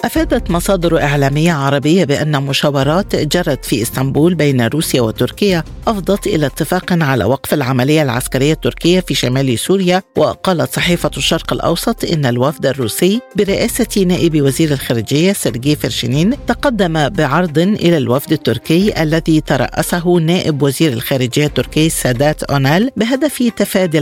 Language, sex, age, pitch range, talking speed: Arabic, female, 50-69, 140-185 Hz, 125 wpm